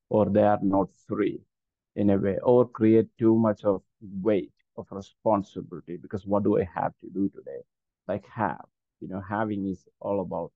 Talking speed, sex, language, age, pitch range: 180 wpm, male, English, 50-69, 100-120 Hz